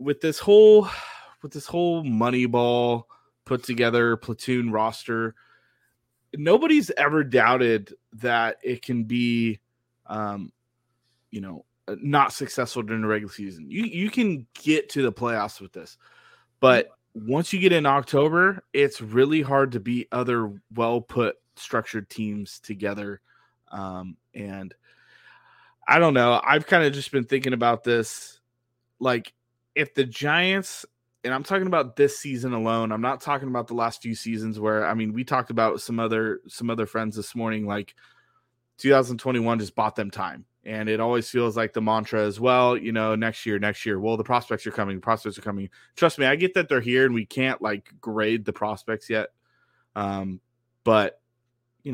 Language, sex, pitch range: English, male, 110-130 Hz